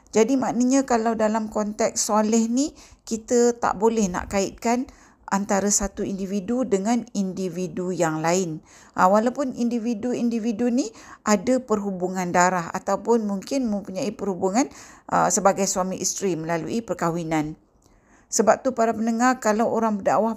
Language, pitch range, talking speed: Malay, 195-235 Hz, 120 wpm